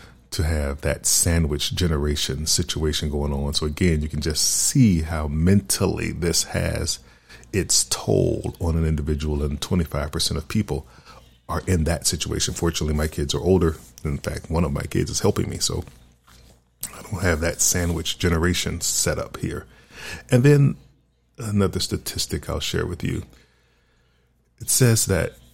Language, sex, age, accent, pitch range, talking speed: English, male, 40-59, American, 70-95 Hz, 155 wpm